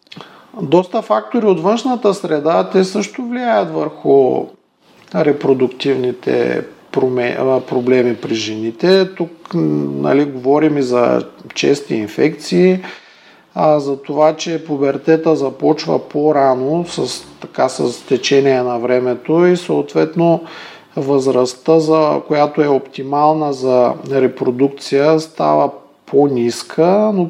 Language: Bulgarian